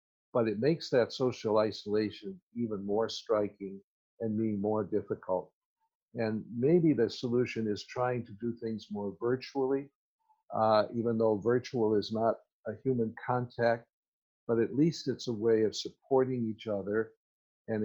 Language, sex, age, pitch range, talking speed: English, male, 60-79, 105-125 Hz, 150 wpm